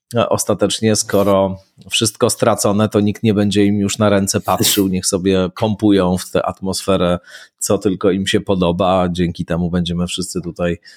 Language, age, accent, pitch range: Polish, 30-49, native, 90-105 Hz